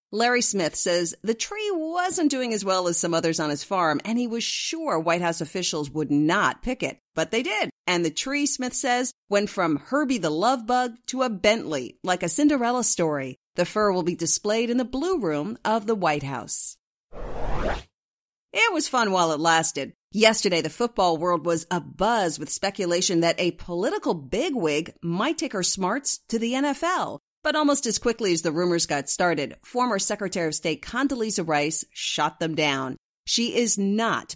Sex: female